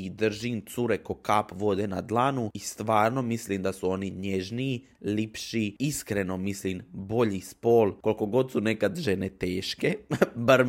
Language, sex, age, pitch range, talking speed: Croatian, male, 20-39, 100-135 Hz, 145 wpm